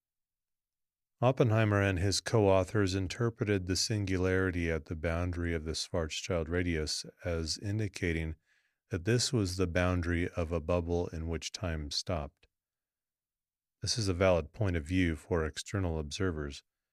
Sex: male